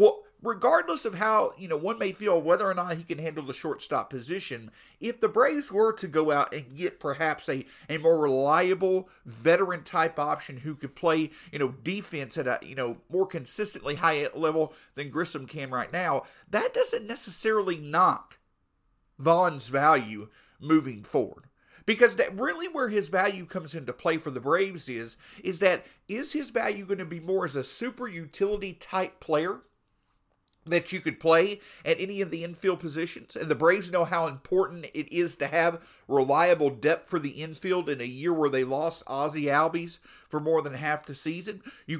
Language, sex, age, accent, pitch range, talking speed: English, male, 40-59, American, 150-190 Hz, 185 wpm